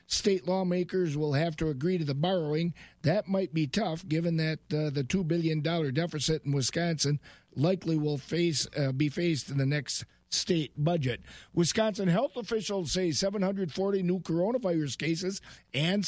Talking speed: 155 wpm